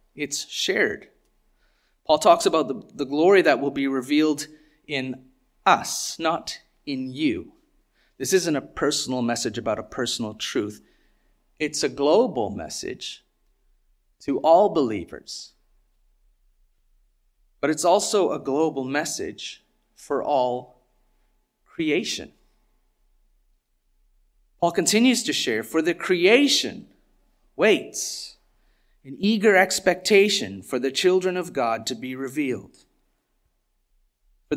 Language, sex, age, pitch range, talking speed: English, male, 40-59, 140-200 Hz, 110 wpm